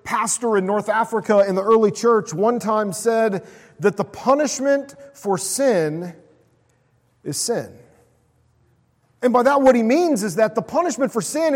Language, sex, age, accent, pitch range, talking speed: English, male, 40-59, American, 185-255 Hz, 155 wpm